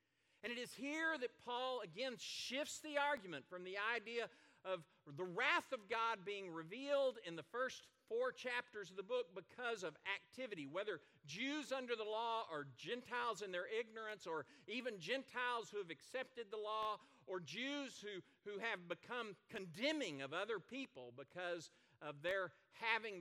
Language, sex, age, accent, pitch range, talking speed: English, male, 50-69, American, 145-230 Hz, 165 wpm